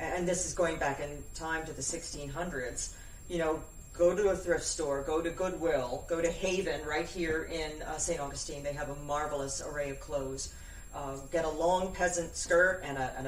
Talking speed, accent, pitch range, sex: 205 wpm, American, 140-180 Hz, female